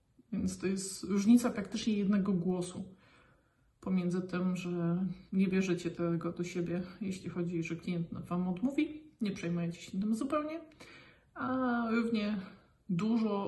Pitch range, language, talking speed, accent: 185-230 Hz, Polish, 130 wpm, native